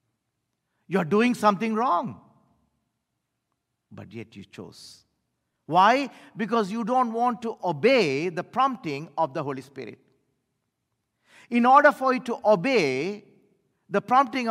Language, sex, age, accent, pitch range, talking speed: English, male, 50-69, Indian, 135-225 Hz, 120 wpm